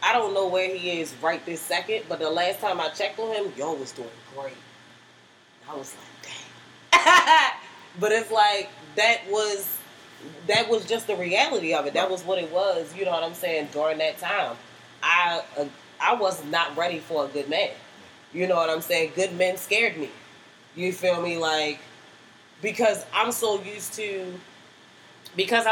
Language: English